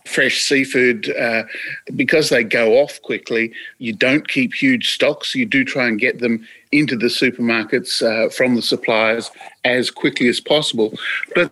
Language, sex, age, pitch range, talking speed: English, male, 50-69, 125-200 Hz, 160 wpm